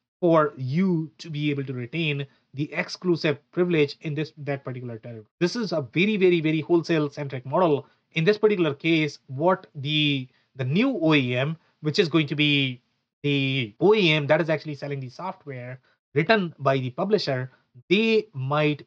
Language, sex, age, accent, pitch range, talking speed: English, male, 30-49, Indian, 135-170 Hz, 165 wpm